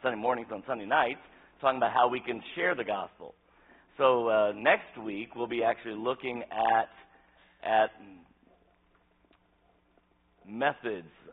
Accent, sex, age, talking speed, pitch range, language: American, male, 50-69, 125 wpm, 75-105 Hz, English